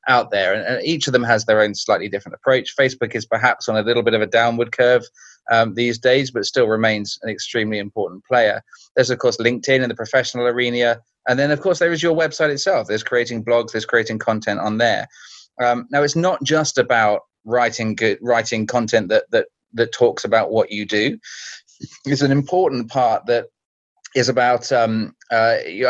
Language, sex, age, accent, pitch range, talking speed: English, male, 20-39, British, 110-140 Hz, 195 wpm